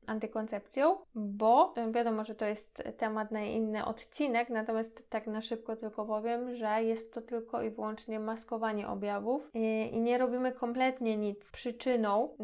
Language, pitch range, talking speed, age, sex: Polish, 215-240 Hz, 150 wpm, 20-39, female